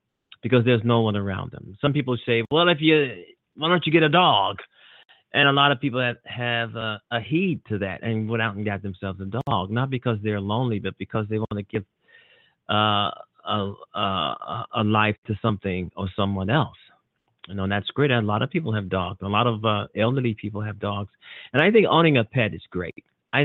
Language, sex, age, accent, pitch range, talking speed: English, male, 30-49, American, 105-130 Hz, 225 wpm